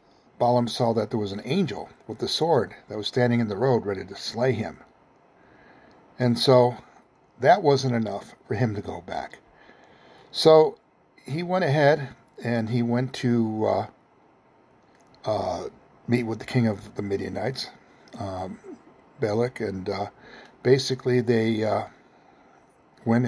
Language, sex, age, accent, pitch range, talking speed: English, male, 60-79, American, 110-130 Hz, 140 wpm